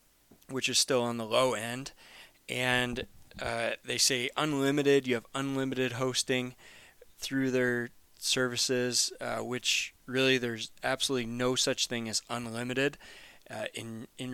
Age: 20-39